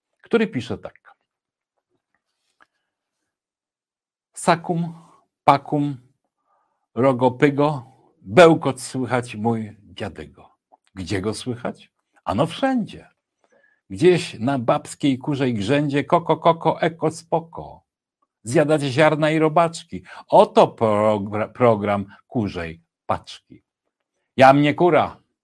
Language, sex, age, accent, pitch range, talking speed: Polish, male, 60-79, native, 110-155 Hz, 85 wpm